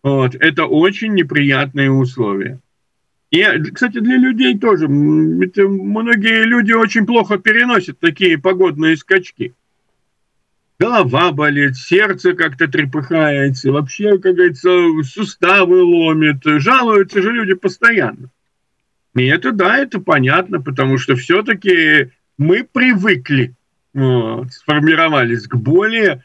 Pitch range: 135-220 Hz